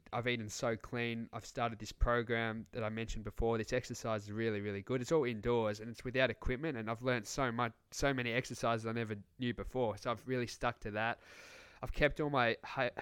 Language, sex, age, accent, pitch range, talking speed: English, male, 20-39, Australian, 110-125 Hz, 220 wpm